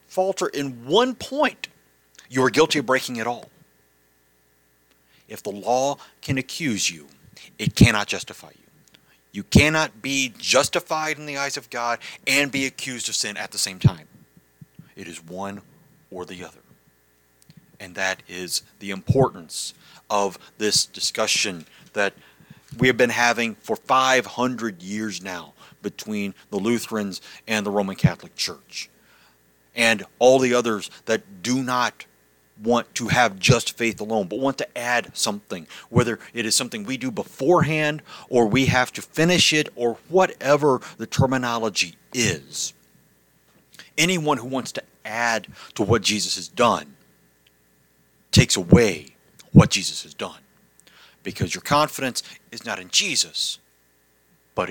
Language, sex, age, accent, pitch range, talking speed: English, male, 40-59, American, 85-135 Hz, 145 wpm